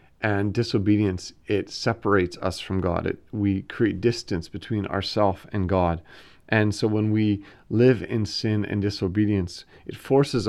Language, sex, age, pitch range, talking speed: English, male, 40-59, 95-110 Hz, 145 wpm